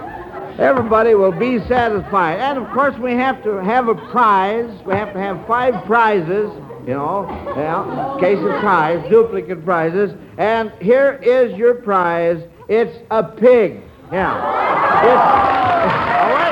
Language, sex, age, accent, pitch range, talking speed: English, male, 60-79, American, 145-210 Hz, 140 wpm